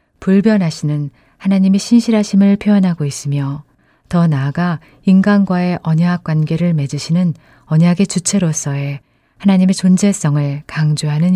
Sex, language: female, Korean